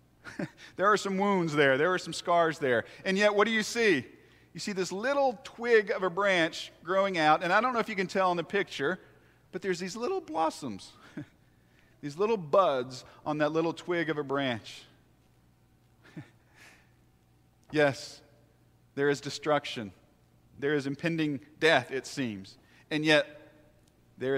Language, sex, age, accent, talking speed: English, male, 40-59, American, 160 wpm